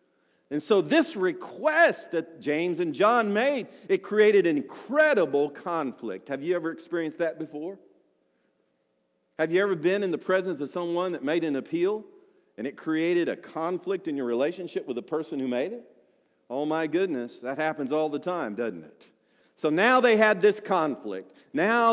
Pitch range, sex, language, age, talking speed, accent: 155-255 Hz, male, English, 50-69, 175 wpm, American